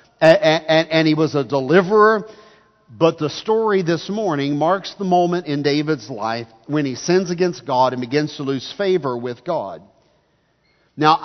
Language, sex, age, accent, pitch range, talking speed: English, male, 50-69, American, 140-175 Hz, 165 wpm